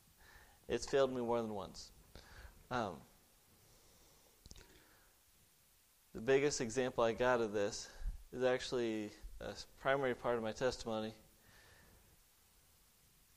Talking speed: 100 wpm